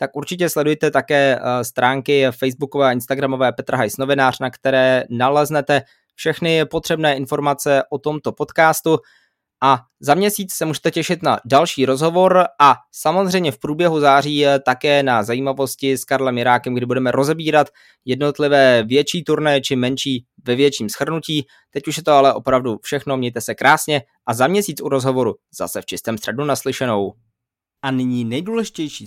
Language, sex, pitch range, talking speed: Czech, male, 125-155 Hz, 155 wpm